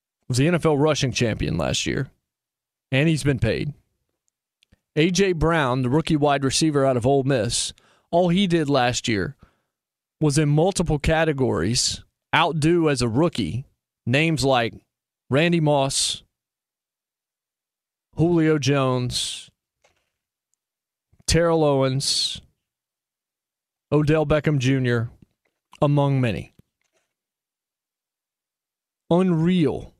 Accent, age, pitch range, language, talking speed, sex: American, 30-49, 125-155 Hz, English, 95 wpm, male